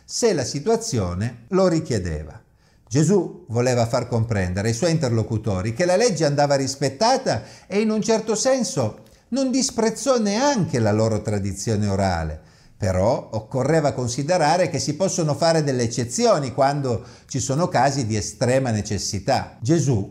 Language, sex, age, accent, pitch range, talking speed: Italian, male, 50-69, native, 115-175 Hz, 135 wpm